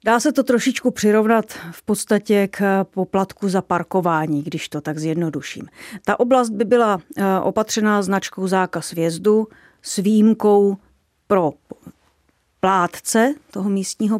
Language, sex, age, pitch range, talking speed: Czech, female, 40-59, 185-215 Hz, 125 wpm